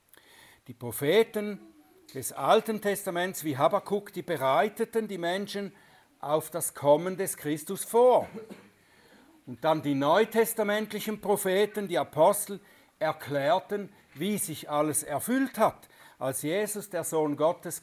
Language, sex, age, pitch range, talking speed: German, male, 60-79, 150-205 Hz, 120 wpm